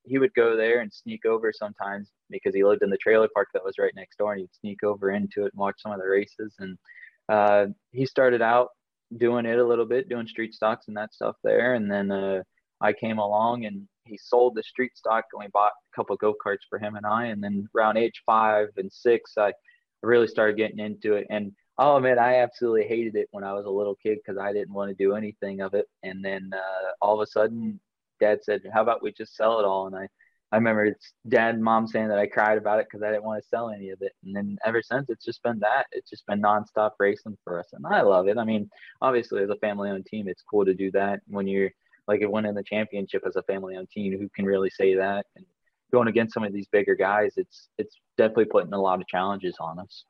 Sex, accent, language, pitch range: male, American, English, 100-115 Hz